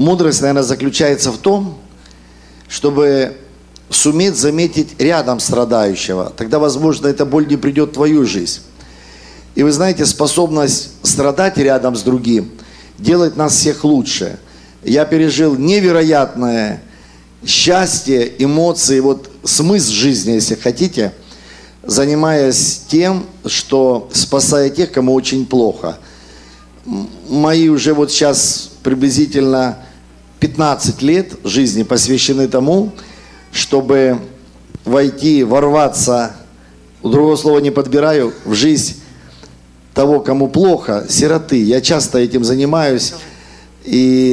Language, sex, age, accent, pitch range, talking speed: Russian, male, 50-69, native, 120-150 Hz, 105 wpm